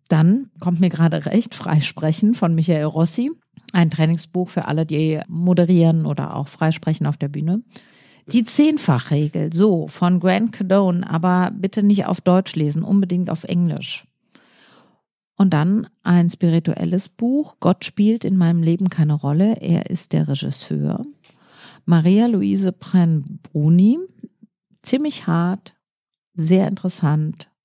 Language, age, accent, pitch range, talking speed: German, 50-69, German, 155-190 Hz, 130 wpm